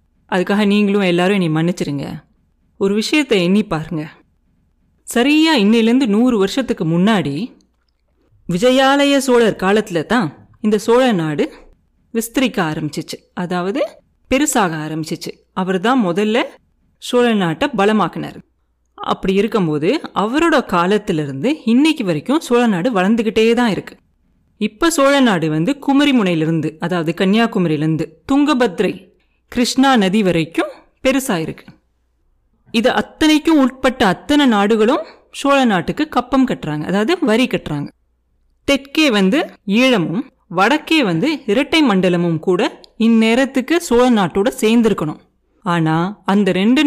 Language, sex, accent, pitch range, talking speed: Tamil, female, native, 170-255 Hz, 100 wpm